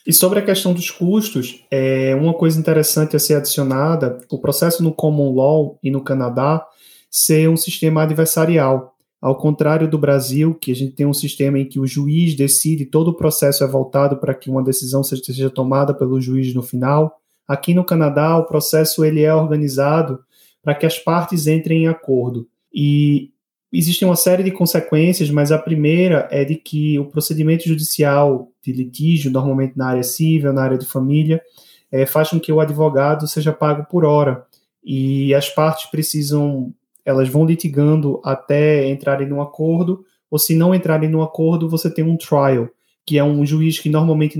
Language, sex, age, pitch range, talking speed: Portuguese, male, 20-39, 140-160 Hz, 175 wpm